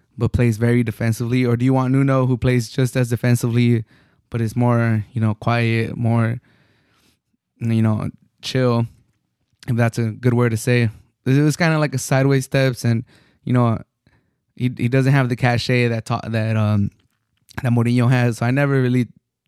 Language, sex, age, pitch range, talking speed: English, male, 20-39, 120-135 Hz, 180 wpm